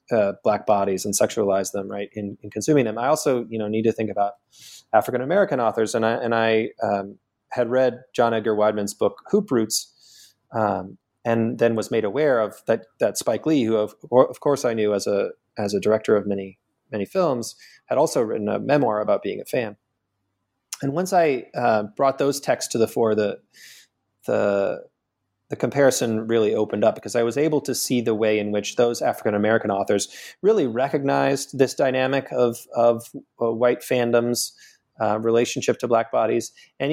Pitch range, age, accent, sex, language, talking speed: 105-125 Hz, 30-49, American, male, English, 185 wpm